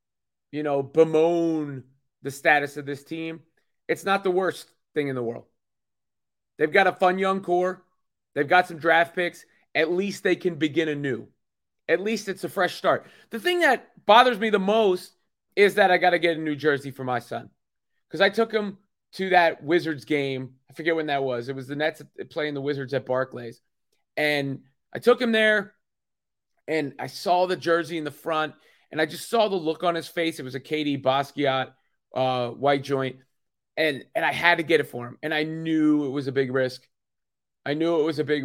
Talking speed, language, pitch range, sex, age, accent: 210 wpm, English, 135-175 Hz, male, 30-49, American